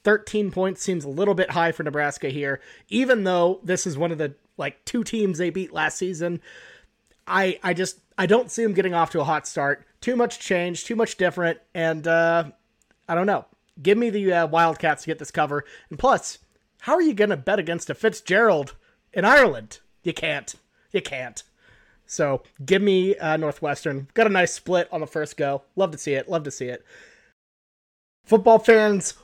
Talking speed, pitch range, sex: 200 wpm, 155-210 Hz, male